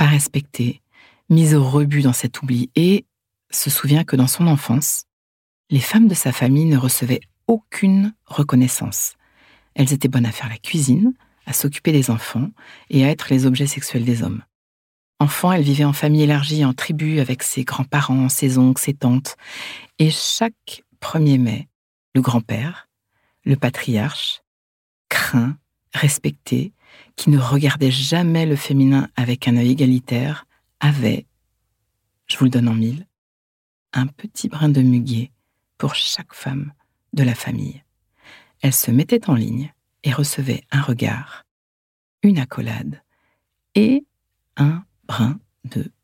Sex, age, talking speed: female, 60-79, 145 wpm